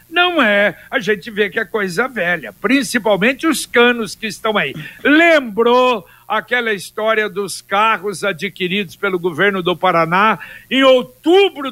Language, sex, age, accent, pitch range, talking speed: Portuguese, male, 60-79, Brazilian, 215-270 Hz, 140 wpm